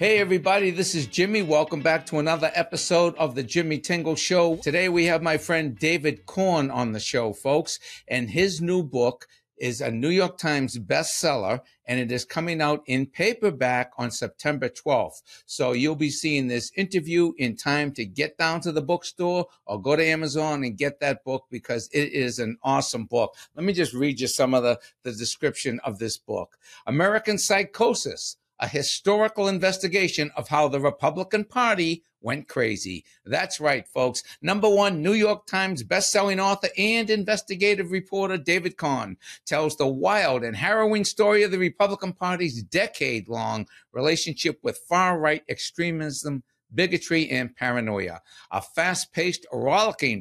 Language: English